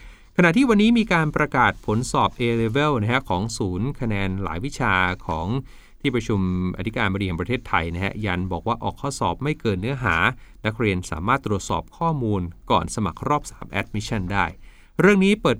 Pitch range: 100-135 Hz